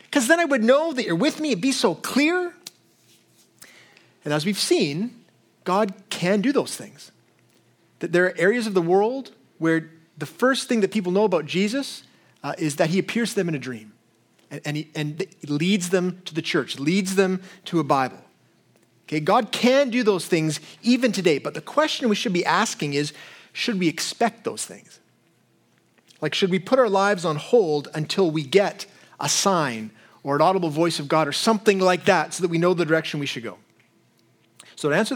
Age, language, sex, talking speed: 30-49, English, male, 205 wpm